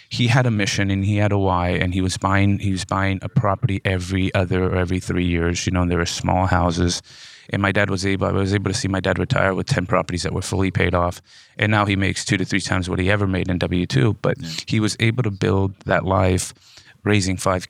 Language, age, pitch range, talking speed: English, 30-49, 90-100 Hz, 260 wpm